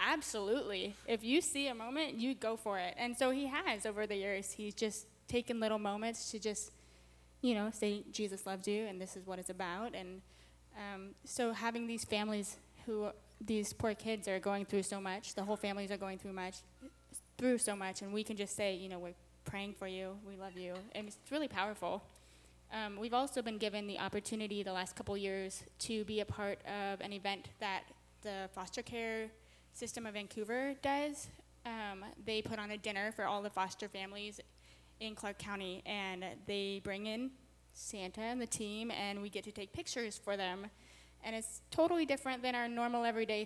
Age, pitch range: 10-29, 195-225 Hz